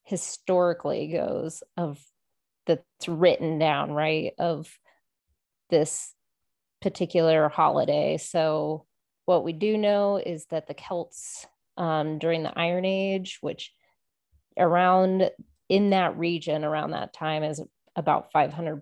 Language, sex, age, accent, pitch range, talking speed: English, female, 30-49, American, 155-180 Hz, 115 wpm